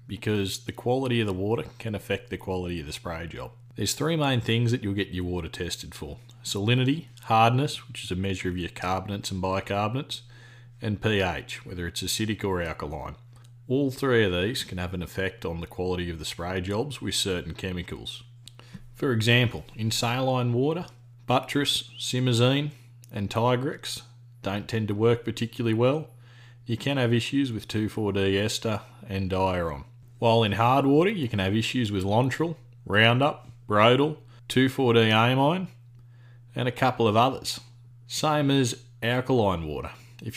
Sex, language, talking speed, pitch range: male, English, 160 wpm, 100-120 Hz